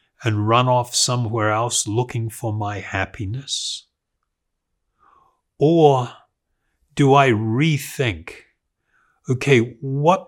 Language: English